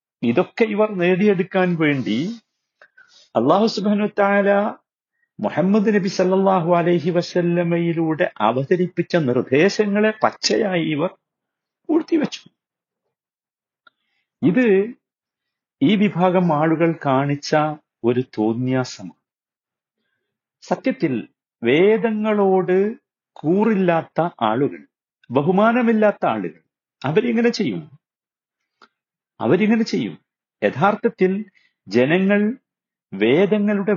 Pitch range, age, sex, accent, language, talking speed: 155-215 Hz, 50-69, male, native, Malayalam, 65 wpm